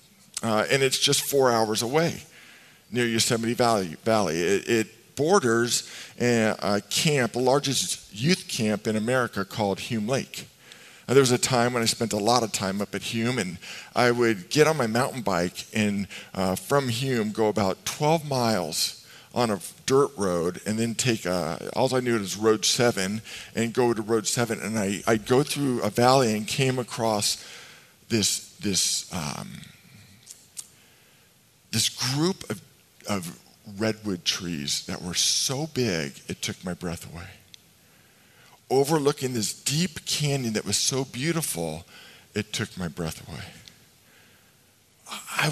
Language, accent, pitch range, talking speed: English, American, 105-135 Hz, 155 wpm